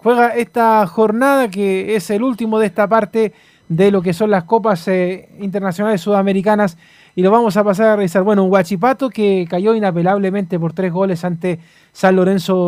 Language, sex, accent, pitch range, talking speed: Spanish, male, Argentinian, 190-235 Hz, 180 wpm